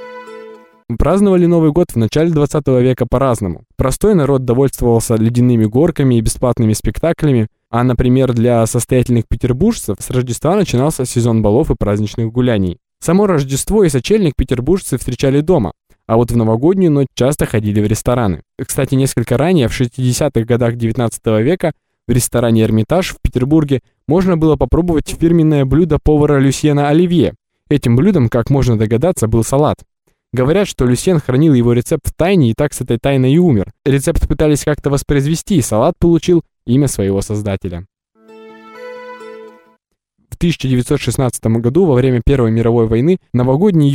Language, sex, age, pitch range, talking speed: Russian, male, 20-39, 115-150 Hz, 145 wpm